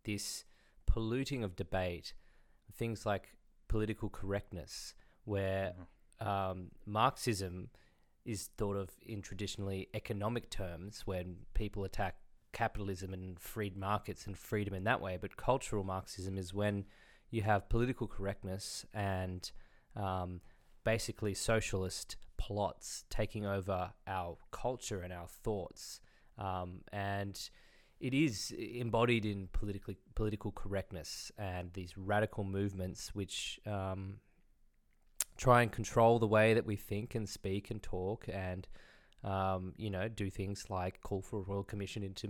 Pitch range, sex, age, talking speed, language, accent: 95-110 Hz, male, 20-39, 130 wpm, English, Australian